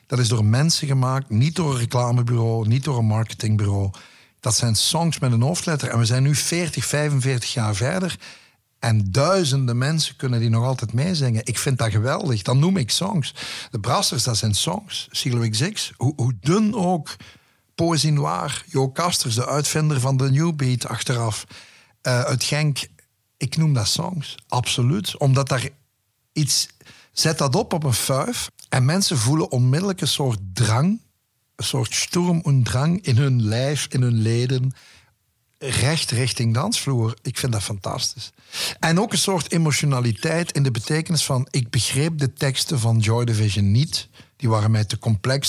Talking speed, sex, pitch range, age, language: 170 wpm, male, 115-145 Hz, 60-79, Dutch